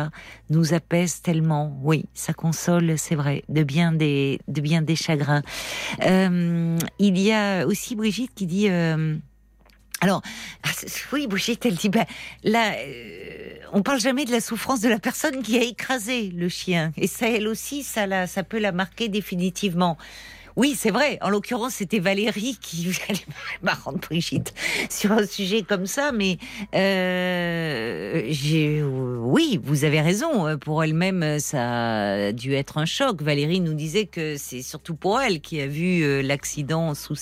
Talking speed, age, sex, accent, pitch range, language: 160 wpm, 50-69, female, French, 155-215 Hz, French